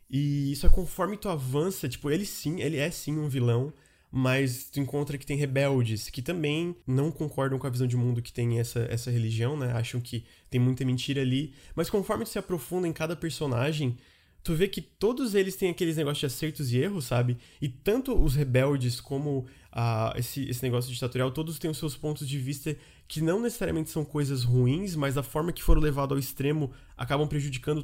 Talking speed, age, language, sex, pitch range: 205 wpm, 20-39, Portuguese, male, 125-155 Hz